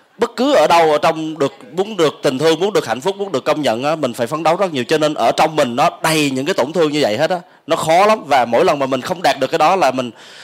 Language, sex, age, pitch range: English, male, 20-39, 140-175 Hz